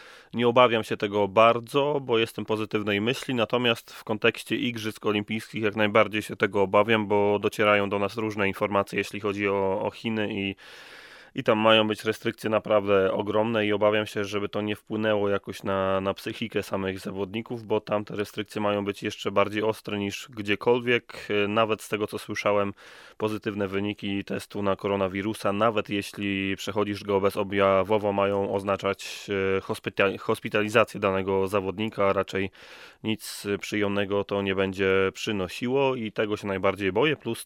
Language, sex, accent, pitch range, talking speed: Polish, male, native, 100-110 Hz, 150 wpm